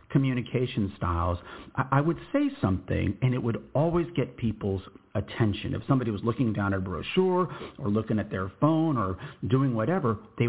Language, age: English, 50-69